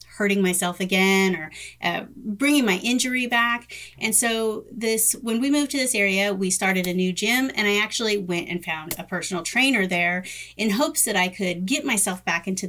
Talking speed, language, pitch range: 200 wpm, English, 185-235 Hz